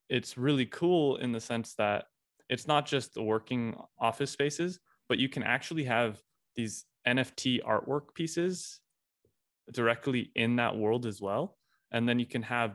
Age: 20-39